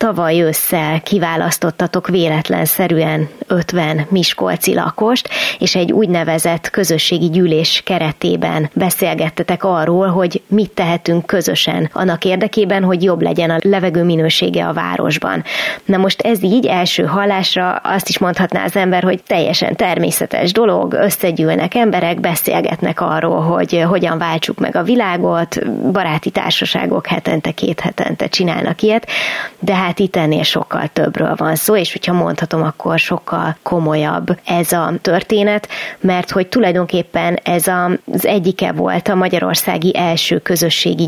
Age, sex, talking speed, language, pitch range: 20-39, female, 130 wpm, Hungarian, 170-195 Hz